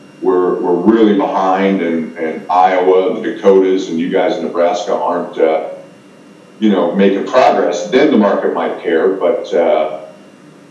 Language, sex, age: English, male, 50-69